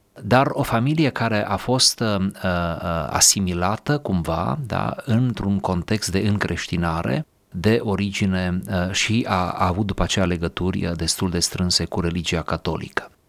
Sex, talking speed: male, 115 wpm